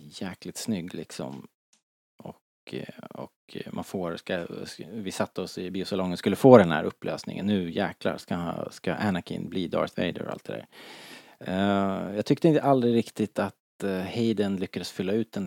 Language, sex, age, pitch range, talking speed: Swedish, male, 30-49, 90-115 Hz, 165 wpm